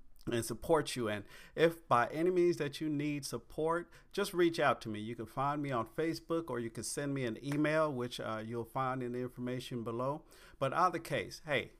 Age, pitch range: 50-69, 115-145 Hz